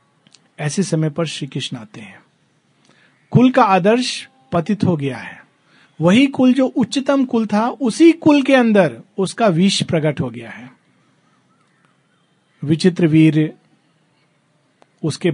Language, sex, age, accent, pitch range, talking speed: Hindi, male, 50-69, native, 155-225 Hz, 130 wpm